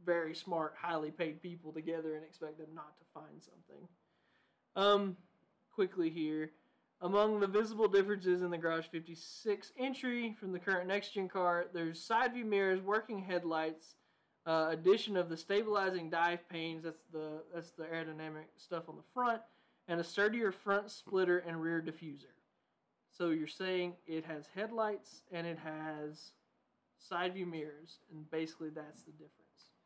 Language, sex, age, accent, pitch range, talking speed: English, male, 20-39, American, 165-200 Hz, 150 wpm